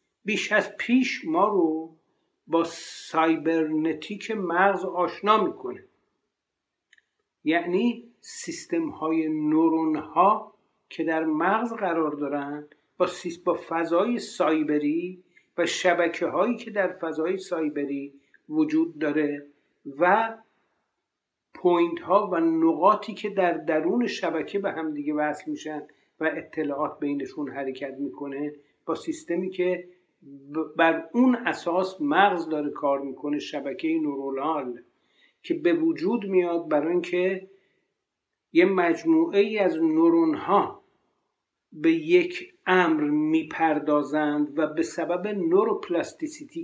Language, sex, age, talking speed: Persian, male, 60-79, 105 wpm